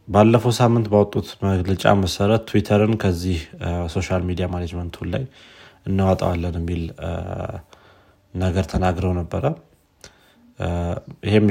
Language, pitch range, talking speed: Amharic, 85-105 Hz, 95 wpm